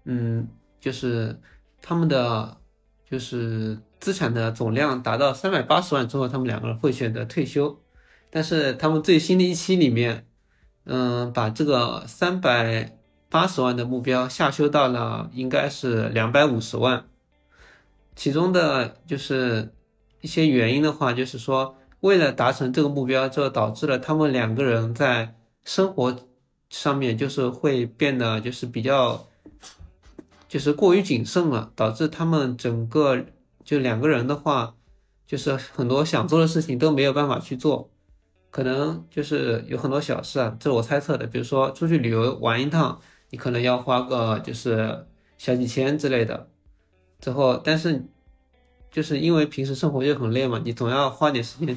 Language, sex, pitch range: Chinese, male, 115-150 Hz